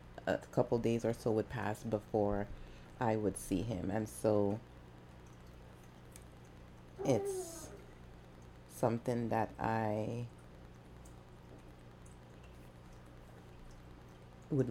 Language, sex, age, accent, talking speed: English, female, 30-49, American, 80 wpm